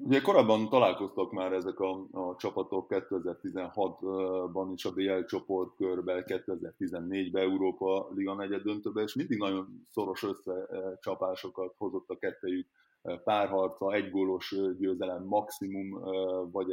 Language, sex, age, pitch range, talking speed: Hungarian, male, 30-49, 90-105 Hz, 120 wpm